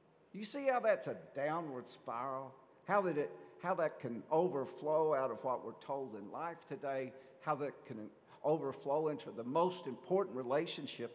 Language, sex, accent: English, male, American